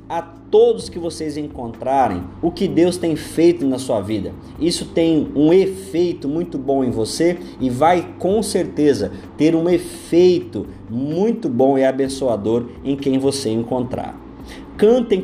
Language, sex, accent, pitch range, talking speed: Portuguese, male, Brazilian, 140-190 Hz, 145 wpm